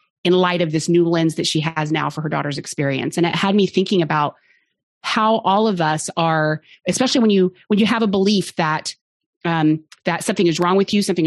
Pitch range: 160-200 Hz